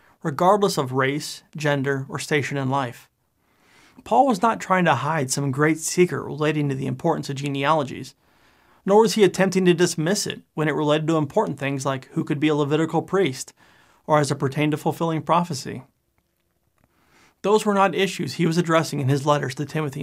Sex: male